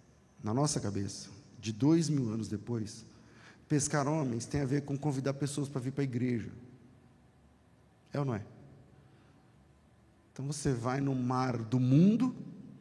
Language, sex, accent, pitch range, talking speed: Portuguese, male, Brazilian, 135-185 Hz, 150 wpm